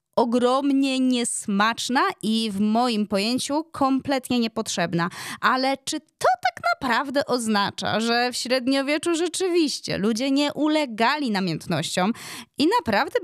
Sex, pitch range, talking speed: female, 195-270 Hz, 110 wpm